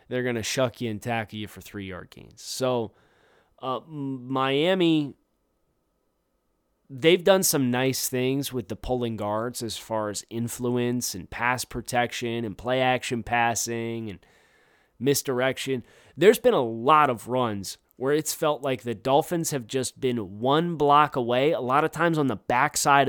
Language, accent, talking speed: English, American, 155 wpm